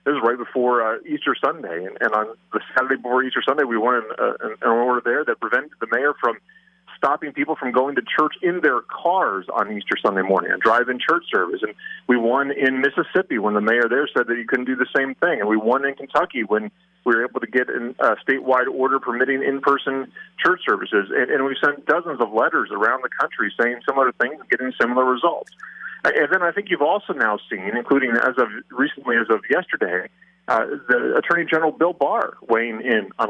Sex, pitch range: male, 120-160 Hz